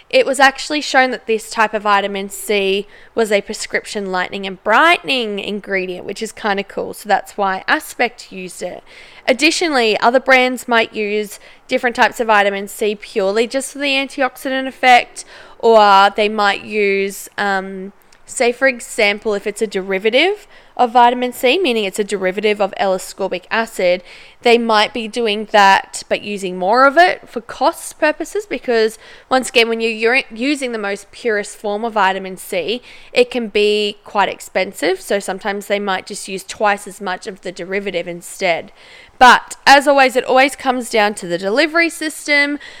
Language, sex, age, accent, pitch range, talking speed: English, female, 10-29, Australian, 200-260 Hz, 170 wpm